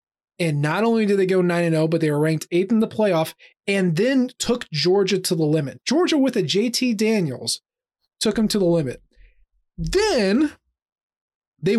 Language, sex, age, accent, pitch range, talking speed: English, male, 20-39, American, 160-215 Hz, 175 wpm